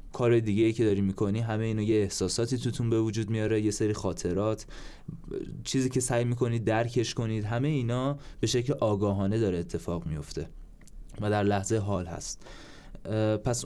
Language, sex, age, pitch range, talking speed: Persian, male, 20-39, 95-120 Hz, 160 wpm